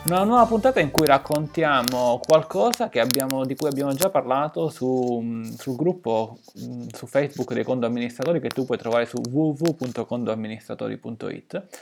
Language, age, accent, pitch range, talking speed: Italian, 20-39, native, 130-175 Hz, 135 wpm